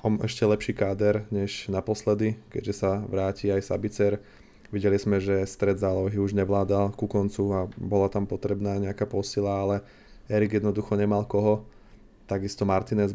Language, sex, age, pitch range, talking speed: Slovak, male, 20-39, 100-110 Hz, 145 wpm